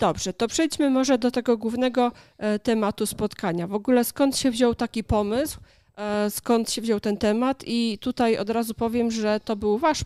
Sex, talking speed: female, 180 wpm